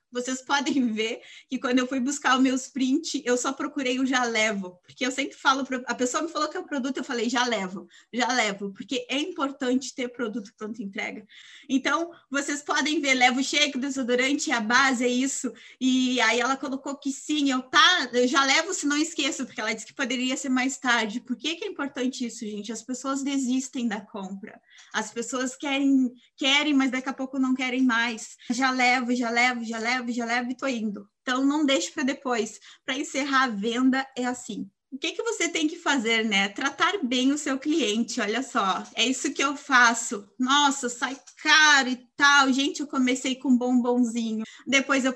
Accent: Brazilian